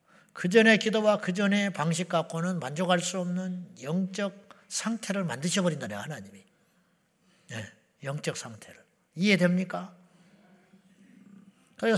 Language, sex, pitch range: Korean, male, 175-230 Hz